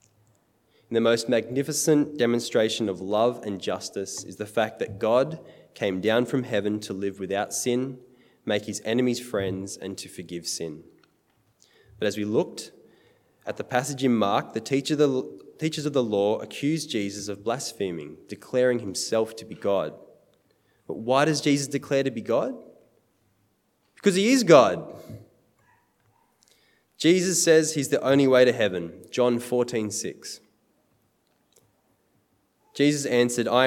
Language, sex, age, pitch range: English, male, 20-39, 110-135 Hz